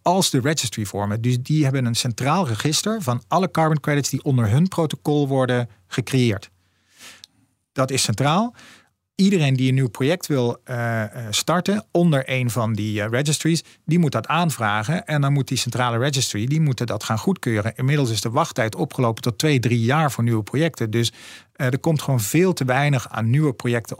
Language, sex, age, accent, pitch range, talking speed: Dutch, male, 40-59, Dutch, 115-150 Hz, 180 wpm